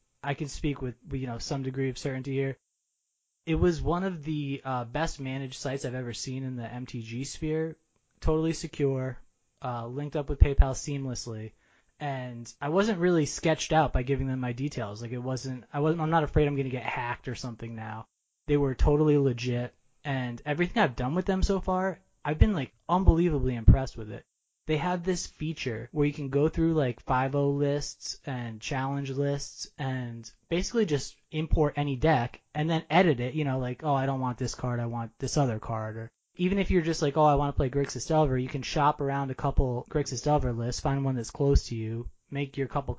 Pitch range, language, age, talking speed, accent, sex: 125-155 Hz, English, 20-39, 210 wpm, American, male